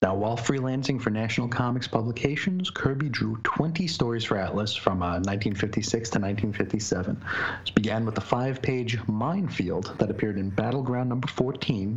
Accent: American